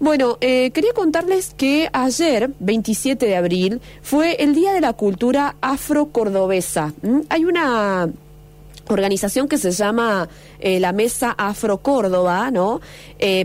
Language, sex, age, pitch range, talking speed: Spanish, female, 20-39, 185-250 Hz, 140 wpm